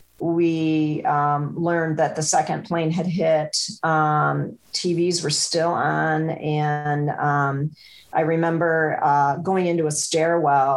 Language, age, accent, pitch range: English, 40-59, American, 145-170 Hz